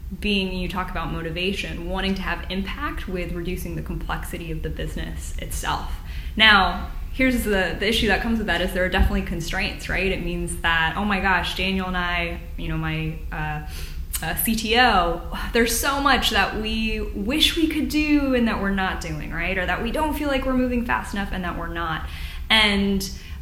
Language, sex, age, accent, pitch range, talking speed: English, female, 10-29, American, 175-215 Hz, 195 wpm